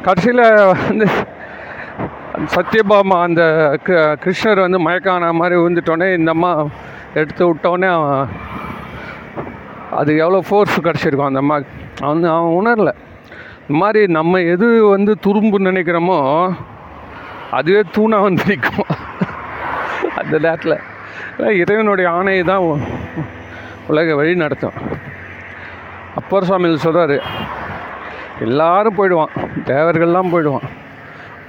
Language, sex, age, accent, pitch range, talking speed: Tamil, male, 40-59, native, 150-200 Hz, 85 wpm